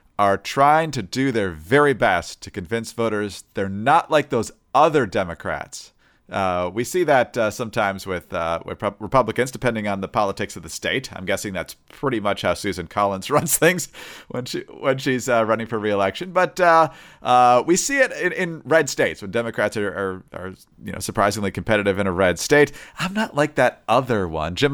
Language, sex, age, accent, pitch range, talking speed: English, male, 40-59, American, 100-145 Hz, 200 wpm